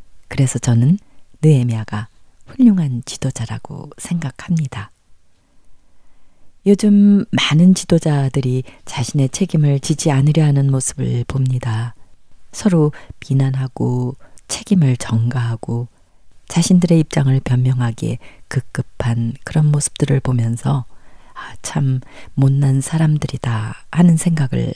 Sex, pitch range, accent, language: female, 120-155 Hz, native, Korean